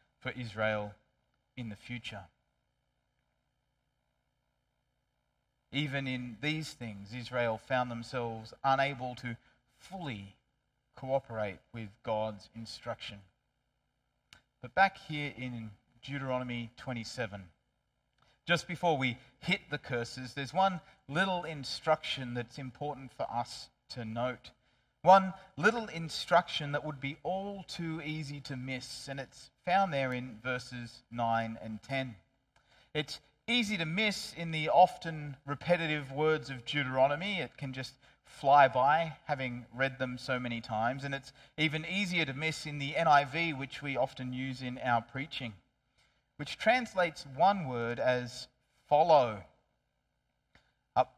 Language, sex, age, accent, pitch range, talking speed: English, male, 30-49, Australian, 120-150 Hz, 125 wpm